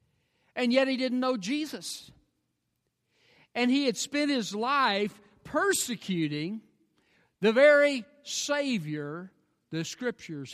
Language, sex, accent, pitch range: English, male, American, 165-225 Hz